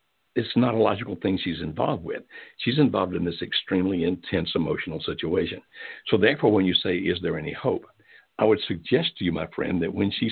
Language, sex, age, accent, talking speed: English, male, 60-79, American, 205 wpm